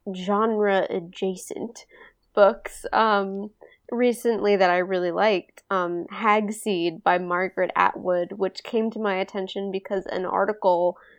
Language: English